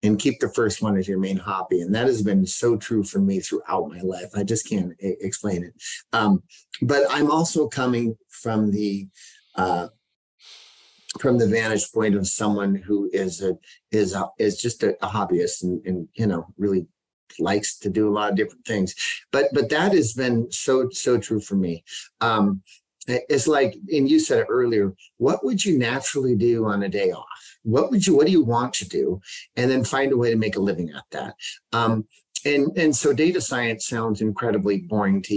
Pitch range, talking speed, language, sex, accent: 100-130 Hz, 200 wpm, English, male, American